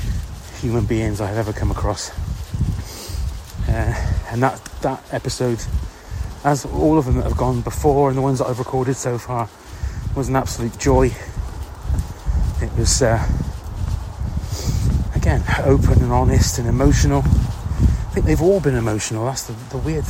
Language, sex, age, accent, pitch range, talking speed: English, male, 30-49, British, 85-125 Hz, 150 wpm